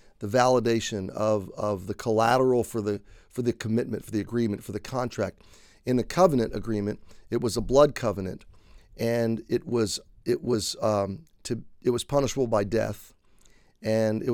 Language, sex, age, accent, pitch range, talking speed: English, male, 40-59, American, 105-130 Hz, 165 wpm